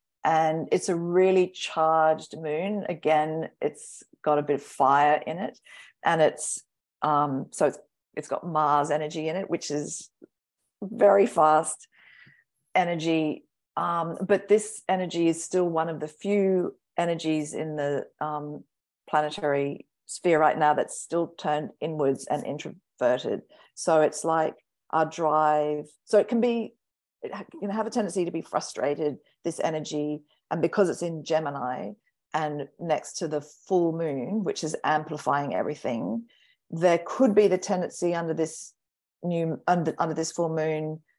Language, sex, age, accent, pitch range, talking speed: English, female, 50-69, Australian, 150-180 Hz, 145 wpm